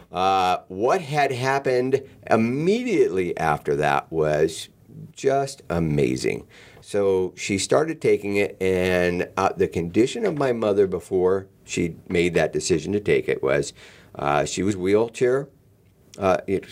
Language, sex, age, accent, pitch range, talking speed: English, male, 50-69, American, 95-150 Hz, 125 wpm